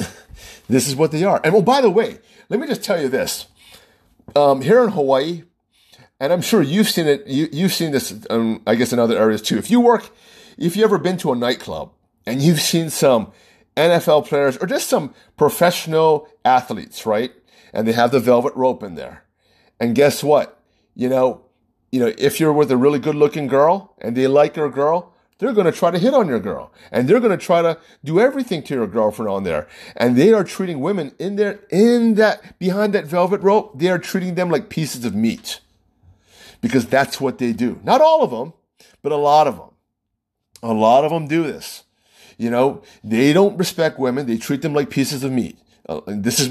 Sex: male